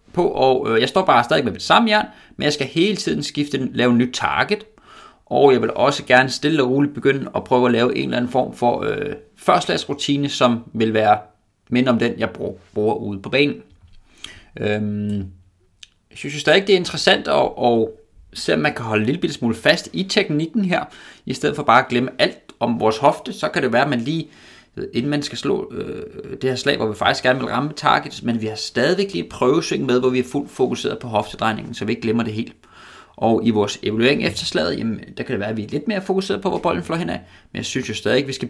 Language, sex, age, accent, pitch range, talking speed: Danish, male, 30-49, native, 110-150 Hz, 245 wpm